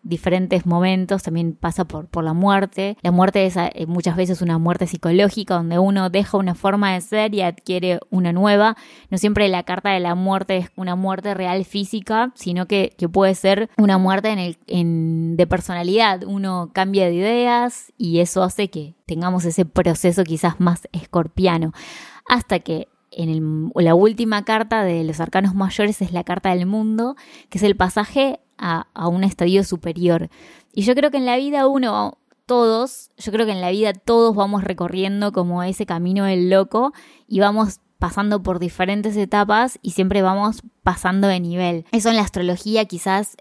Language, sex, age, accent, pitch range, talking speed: Spanish, female, 20-39, Argentinian, 180-210 Hz, 180 wpm